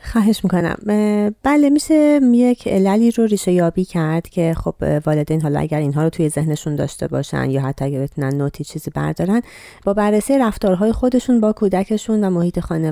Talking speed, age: 170 wpm, 30-49